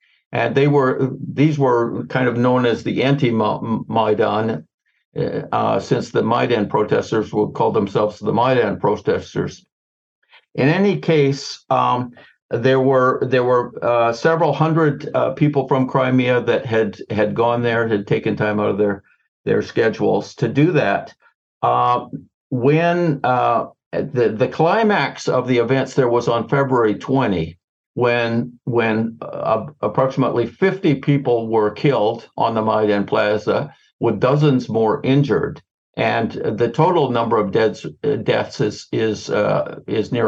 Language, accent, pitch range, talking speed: English, American, 115-145 Hz, 145 wpm